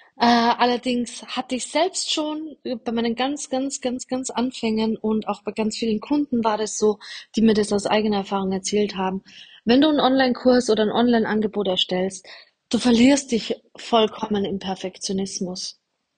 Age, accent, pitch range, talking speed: 20-39, German, 210-255 Hz, 160 wpm